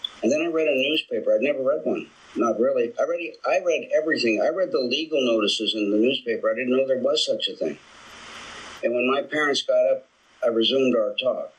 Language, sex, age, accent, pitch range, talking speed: English, male, 50-69, American, 115-165 Hz, 220 wpm